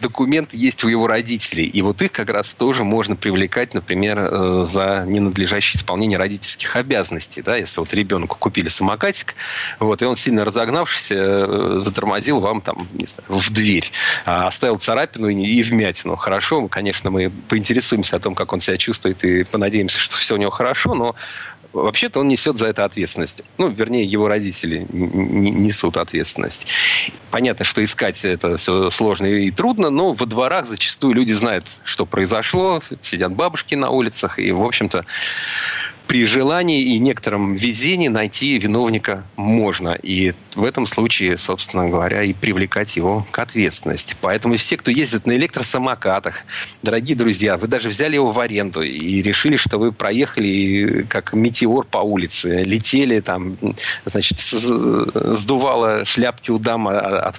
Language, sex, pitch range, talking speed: Russian, male, 95-115 Hz, 145 wpm